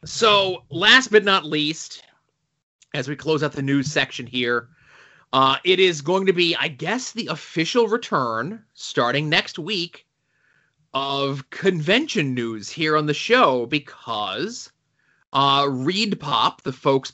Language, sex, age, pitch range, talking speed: English, male, 30-49, 140-165 Hz, 135 wpm